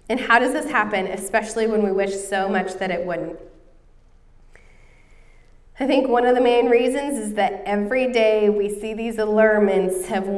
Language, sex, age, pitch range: English, female, 20-39, 185-230 Hz